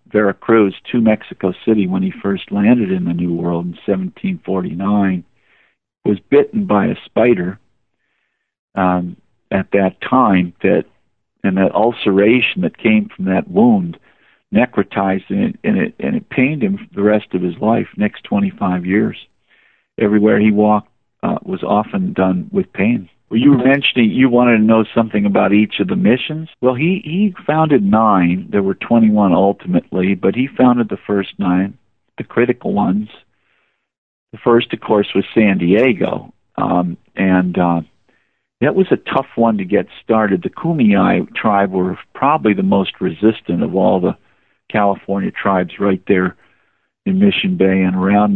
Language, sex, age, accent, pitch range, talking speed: English, male, 50-69, American, 95-135 Hz, 160 wpm